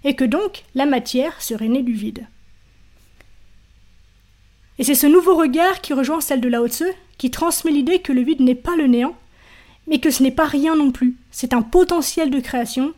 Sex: female